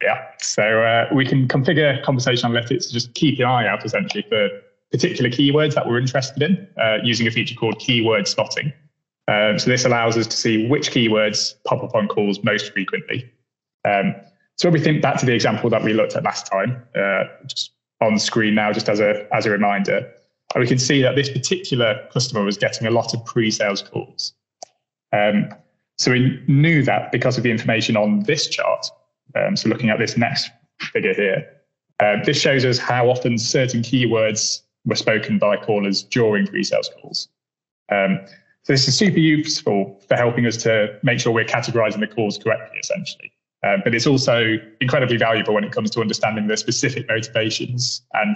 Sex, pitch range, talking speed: male, 110-140 Hz, 190 wpm